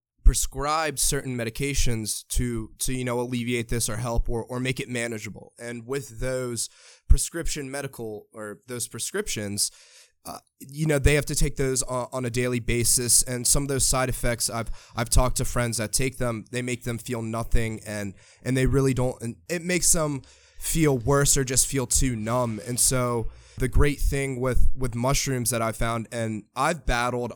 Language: English